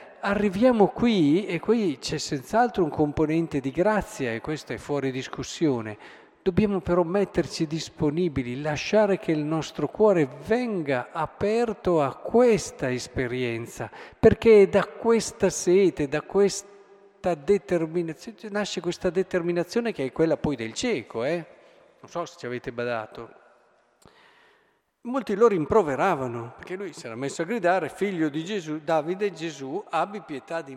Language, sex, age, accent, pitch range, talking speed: Italian, male, 50-69, native, 140-200 Hz, 140 wpm